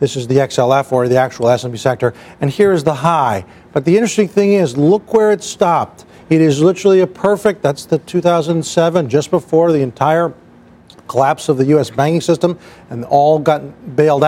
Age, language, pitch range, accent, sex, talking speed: 40-59, English, 150-185 Hz, American, male, 190 wpm